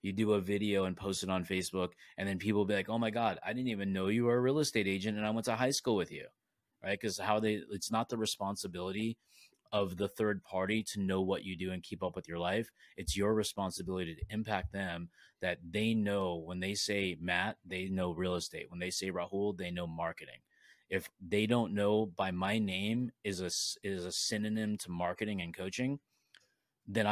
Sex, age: male, 30-49